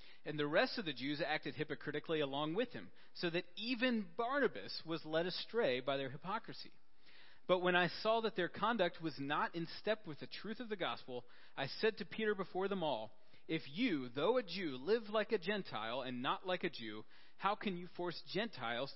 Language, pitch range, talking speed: English, 135-190 Hz, 205 wpm